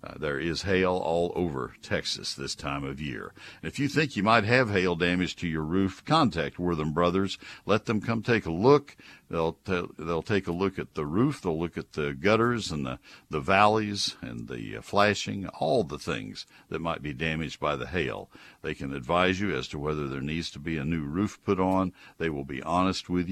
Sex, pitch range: male, 80-110 Hz